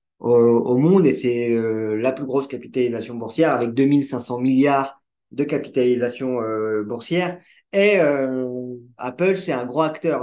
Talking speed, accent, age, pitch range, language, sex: 140 wpm, French, 20-39, 120-150 Hz, French, male